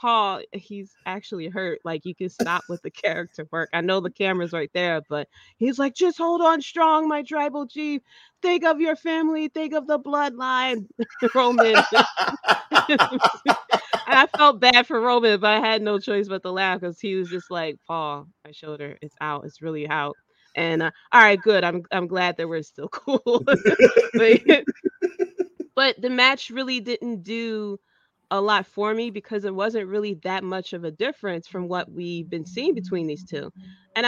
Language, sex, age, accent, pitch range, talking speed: English, female, 20-39, American, 165-235 Hz, 185 wpm